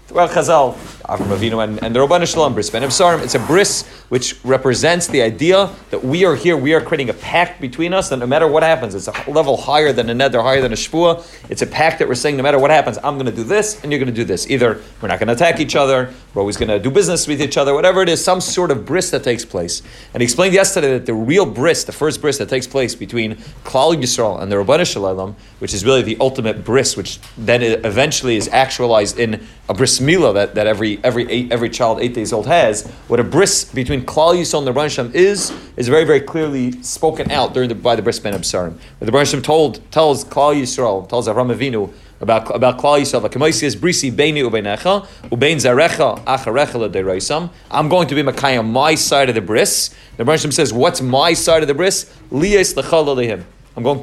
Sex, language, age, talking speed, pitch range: male, English, 30-49, 215 wpm, 120-160 Hz